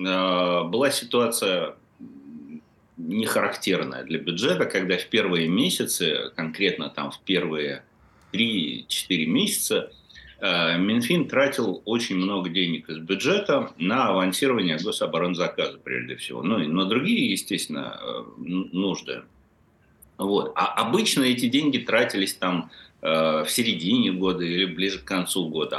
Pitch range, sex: 90-130 Hz, male